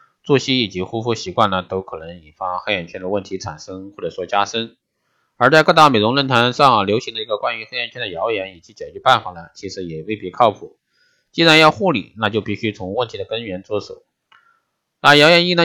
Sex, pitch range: male, 105-155 Hz